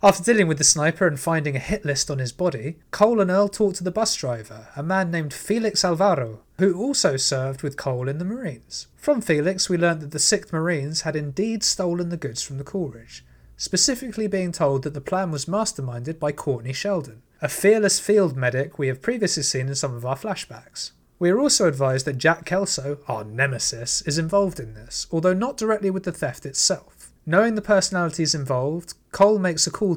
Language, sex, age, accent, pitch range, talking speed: English, male, 30-49, British, 140-195 Hz, 205 wpm